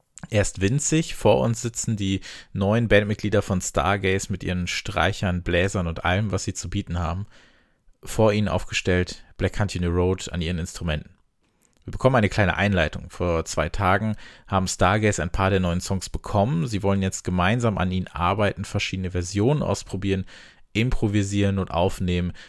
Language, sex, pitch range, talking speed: German, male, 90-110 Hz, 160 wpm